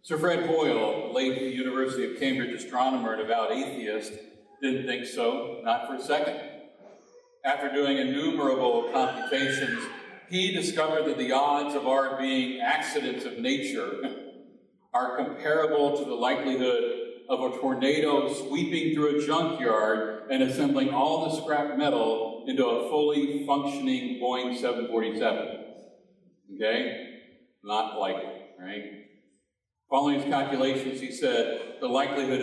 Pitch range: 125-210 Hz